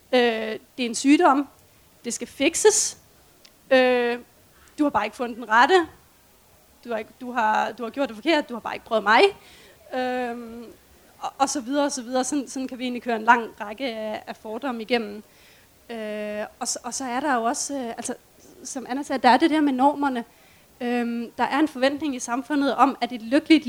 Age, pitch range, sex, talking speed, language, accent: 30-49, 235-275 Hz, female, 210 wpm, Danish, native